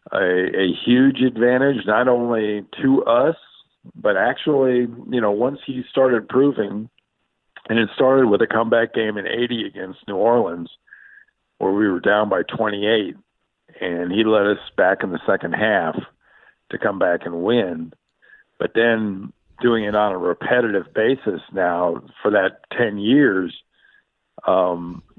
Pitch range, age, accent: 100-140 Hz, 50-69, American